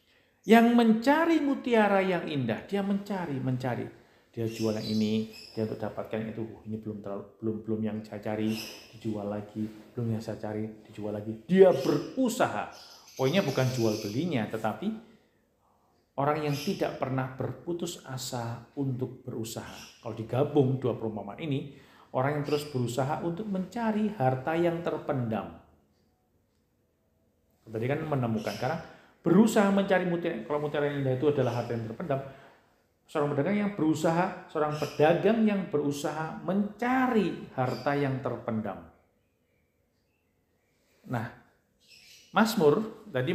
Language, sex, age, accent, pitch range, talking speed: Indonesian, male, 50-69, native, 110-170 Hz, 125 wpm